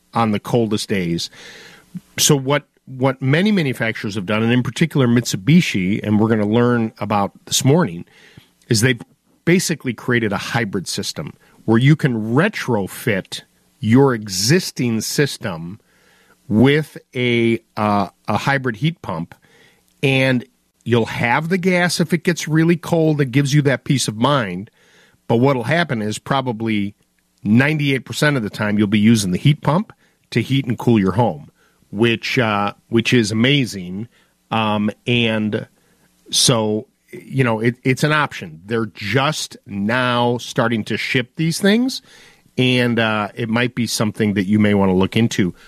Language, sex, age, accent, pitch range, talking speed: English, male, 50-69, American, 110-150 Hz, 155 wpm